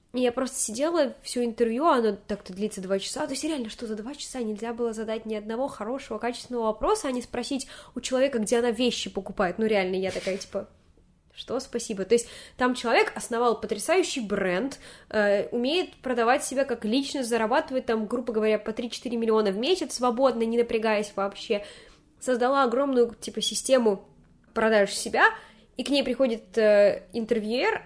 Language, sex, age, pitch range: Russian, female, 20-39, 210-255 Hz